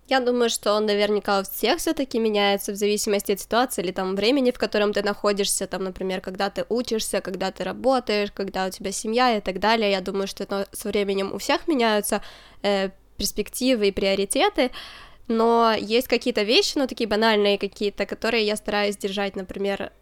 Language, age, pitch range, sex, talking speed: Ukrainian, 20-39, 200-230 Hz, female, 180 wpm